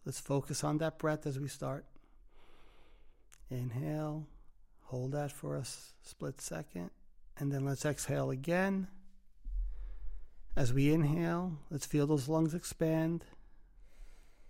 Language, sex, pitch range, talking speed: English, male, 130-155 Hz, 115 wpm